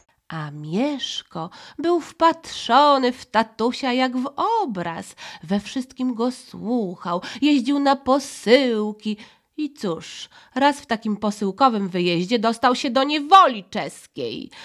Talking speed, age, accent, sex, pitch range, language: 115 wpm, 30-49, native, female, 170-265 Hz, Polish